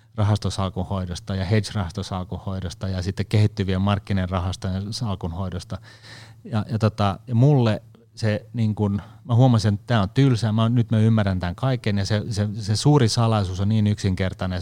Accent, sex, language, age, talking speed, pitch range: native, male, Finnish, 30-49, 155 wpm, 95-110 Hz